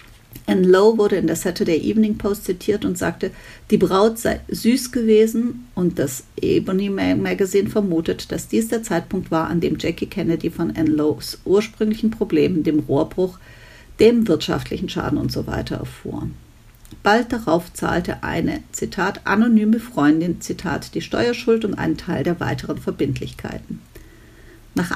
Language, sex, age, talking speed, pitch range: German, female, 50-69, 140 wpm, 165-225 Hz